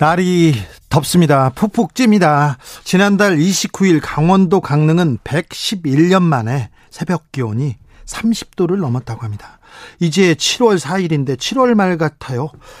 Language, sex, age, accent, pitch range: Korean, male, 40-59, native, 140-185 Hz